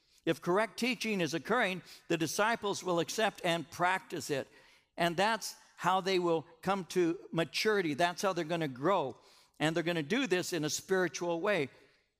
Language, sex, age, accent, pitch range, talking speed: English, male, 60-79, American, 145-190 Hz, 175 wpm